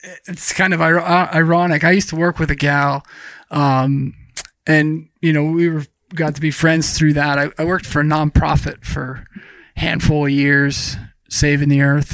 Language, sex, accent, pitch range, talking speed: English, male, American, 140-160 Hz, 185 wpm